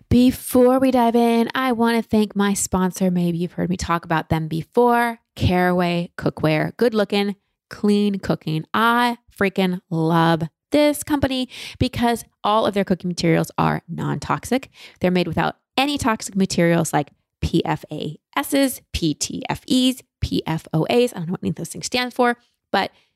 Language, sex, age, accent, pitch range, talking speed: English, female, 20-39, American, 170-230 Hz, 155 wpm